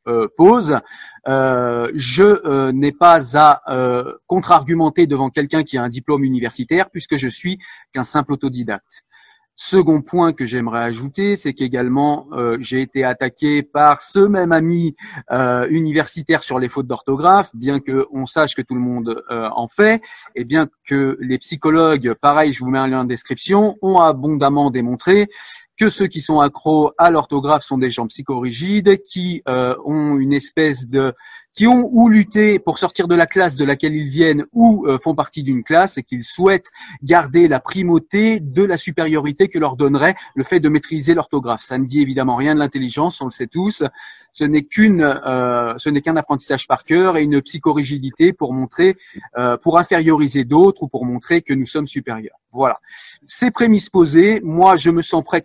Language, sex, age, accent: French, male, 40-59, French